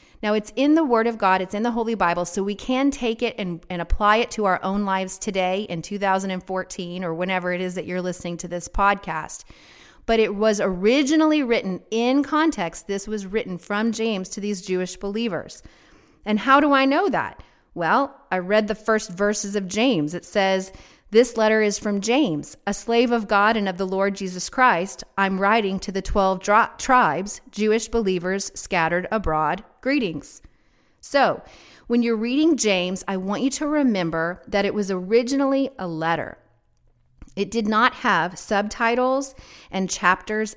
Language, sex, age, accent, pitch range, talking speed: English, female, 30-49, American, 185-230 Hz, 175 wpm